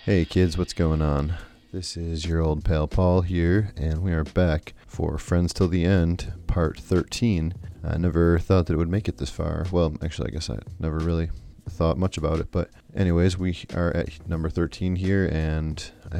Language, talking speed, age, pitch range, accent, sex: English, 200 wpm, 30-49, 85-95 Hz, American, male